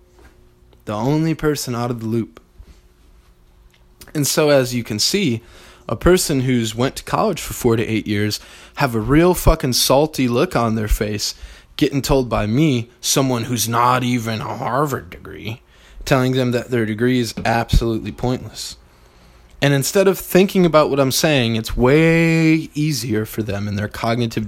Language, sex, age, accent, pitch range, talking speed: English, male, 20-39, American, 100-120 Hz, 165 wpm